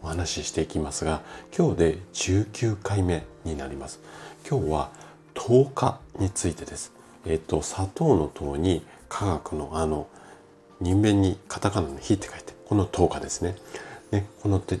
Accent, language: native, Japanese